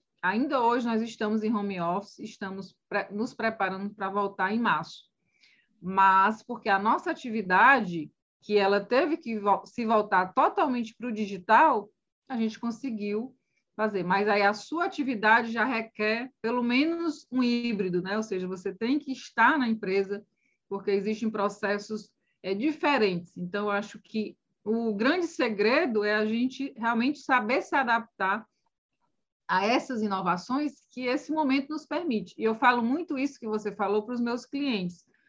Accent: Brazilian